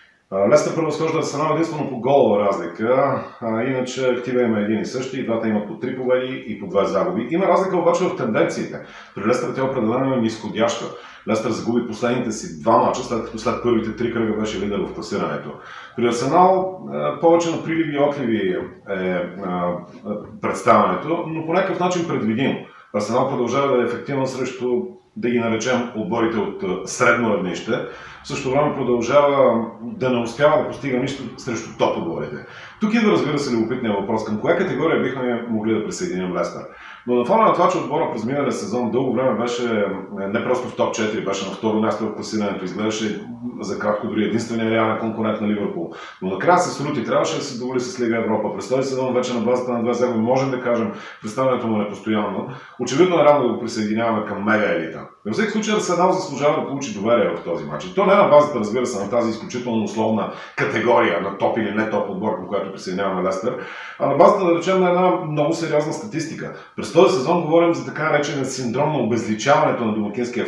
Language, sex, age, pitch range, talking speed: Bulgarian, male, 40-59, 110-145 Hz, 200 wpm